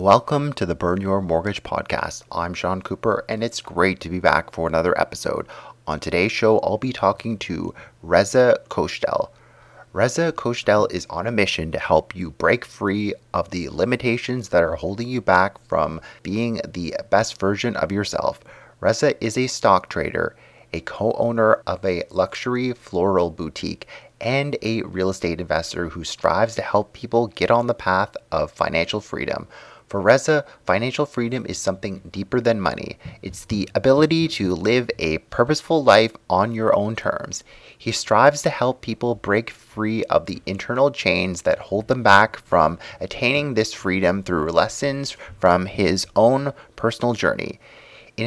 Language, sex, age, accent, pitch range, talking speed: English, male, 30-49, American, 95-120 Hz, 165 wpm